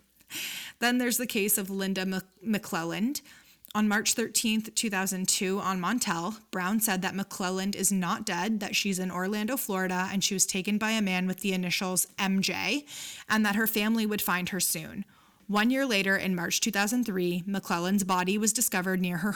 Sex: female